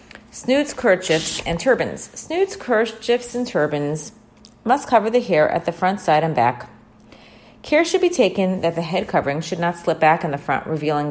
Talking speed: 185 wpm